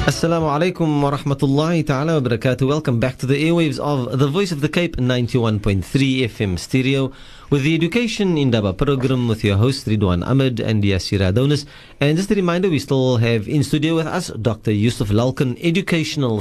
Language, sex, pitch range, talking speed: English, male, 115-150 Hz, 170 wpm